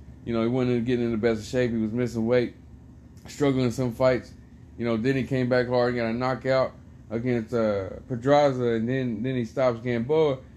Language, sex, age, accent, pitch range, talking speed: English, male, 20-39, American, 125-180 Hz, 215 wpm